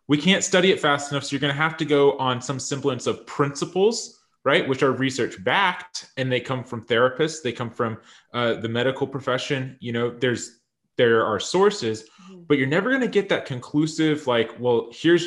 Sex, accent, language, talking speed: male, American, English, 195 wpm